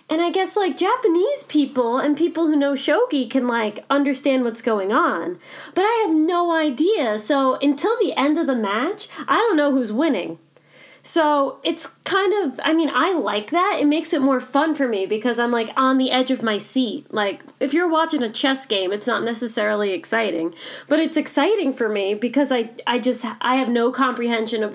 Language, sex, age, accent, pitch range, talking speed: English, female, 20-39, American, 225-300 Hz, 205 wpm